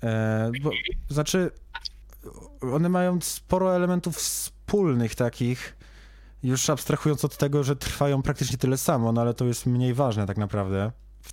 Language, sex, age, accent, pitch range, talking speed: Polish, male, 20-39, native, 110-135 Hz, 140 wpm